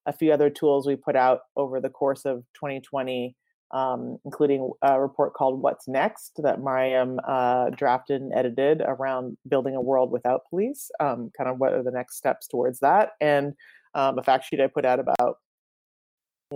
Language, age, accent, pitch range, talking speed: English, 30-49, American, 135-160 Hz, 185 wpm